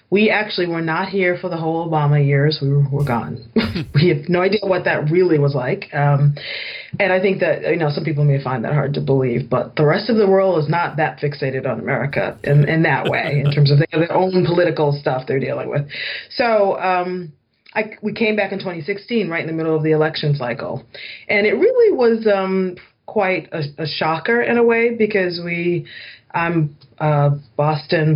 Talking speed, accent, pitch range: 205 wpm, American, 145-180 Hz